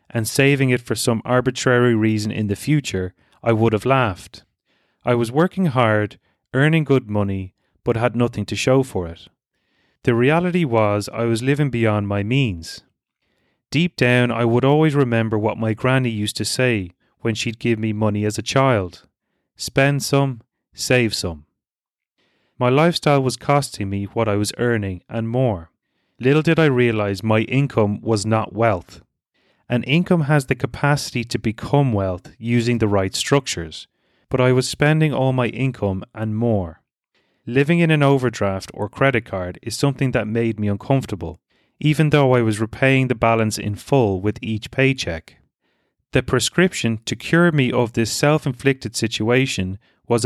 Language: English